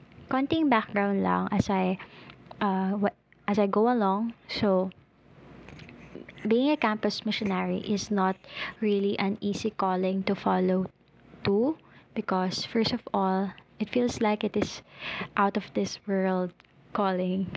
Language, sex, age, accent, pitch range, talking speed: Filipino, female, 20-39, native, 190-215 Hz, 135 wpm